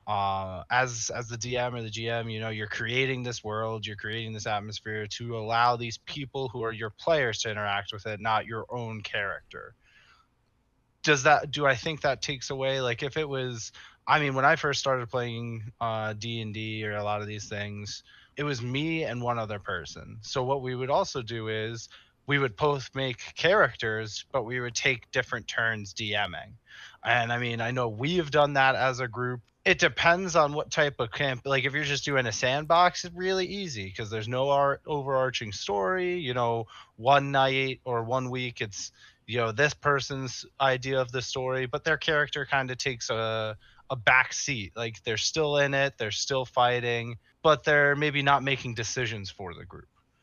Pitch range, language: 110-140 Hz, English